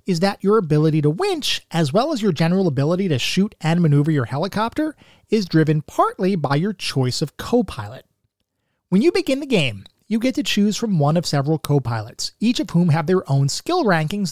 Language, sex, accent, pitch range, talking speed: English, male, American, 140-205 Hz, 200 wpm